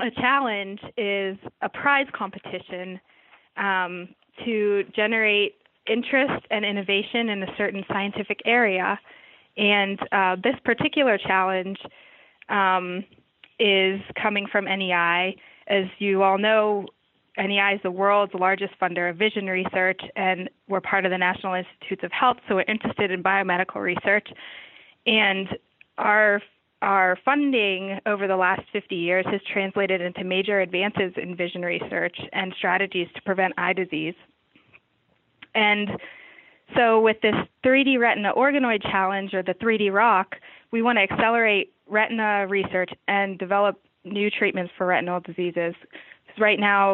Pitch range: 185-210 Hz